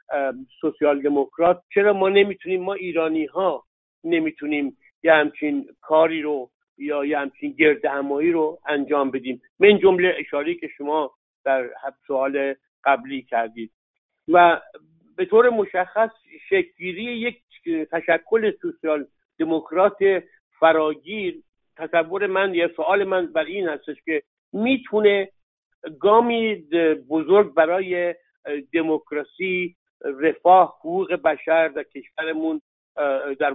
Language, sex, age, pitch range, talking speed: Persian, male, 60-79, 150-205 Hz, 105 wpm